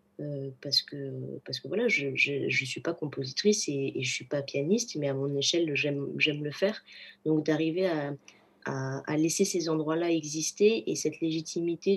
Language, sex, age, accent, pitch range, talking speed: French, female, 20-39, French, 145-180 Hz, 190 wpm